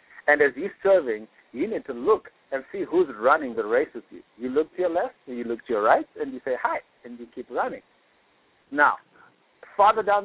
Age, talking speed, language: 60-79, 215 wpm, English